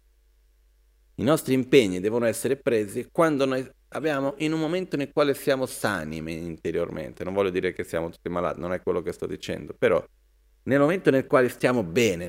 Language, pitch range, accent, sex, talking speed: Italian, 105-140 Hz, native, male, 180 wpm